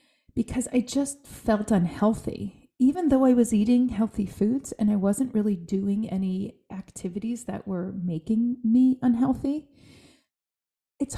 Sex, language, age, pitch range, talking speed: female, English, 30-49, 190-245 Hz, 135 wpm